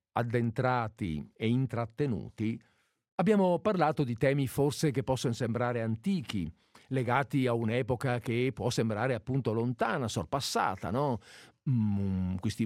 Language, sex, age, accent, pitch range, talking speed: Italian, male, 50-69, native, 115-165 Hz, 115 wpm